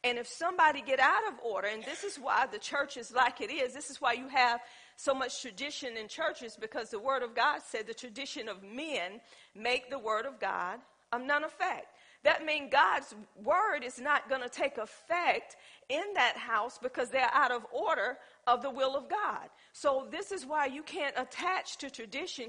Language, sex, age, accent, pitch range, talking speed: English, female, 40-59, American, 235-285 Hz, 205 wpm